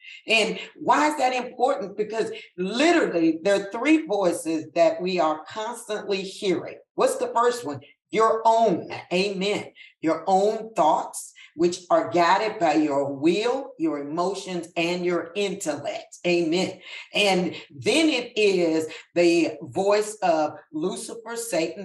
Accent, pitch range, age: American, 175-240 Hz, 50-69